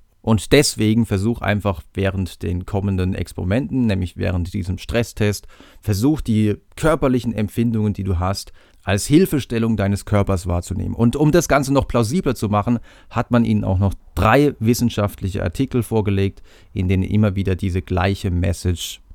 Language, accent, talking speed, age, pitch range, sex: German, German, 150 wpm, 40-59, 95-115 Hz, male